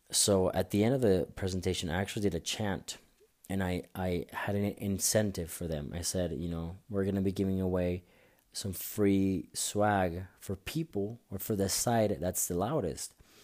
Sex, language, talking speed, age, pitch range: male, English, 190 wpm, 30-49, 90-100 Hz